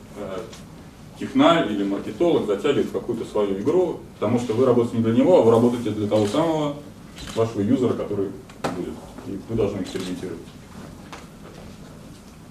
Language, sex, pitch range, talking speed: Russian, male, 100-135 Hz, 135 wpm